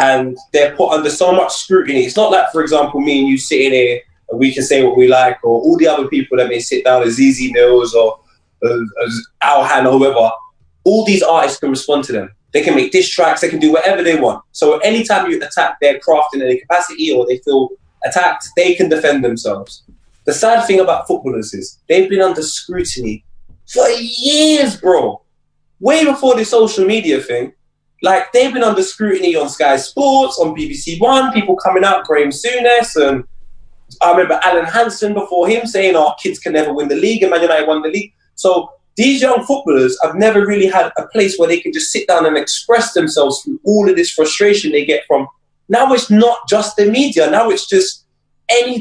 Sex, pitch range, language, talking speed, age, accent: male, 145-230 Hz, English, 210 wpm, 20-39, British